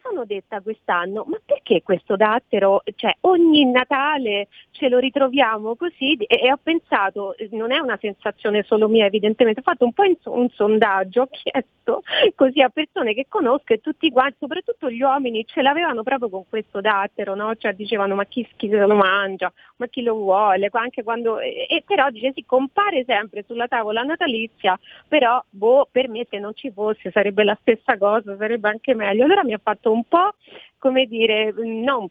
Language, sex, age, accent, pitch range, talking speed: Italian, female, 30-49, native, 210-265 Hz, 180 wpm